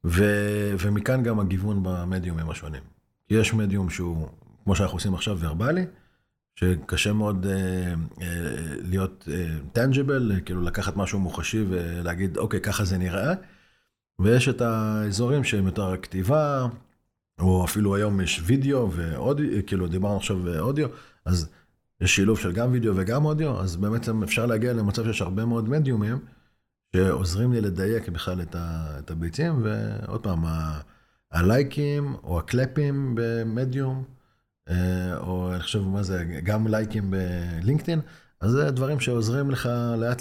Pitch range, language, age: 90-115 Hz, Hebrew, 40-59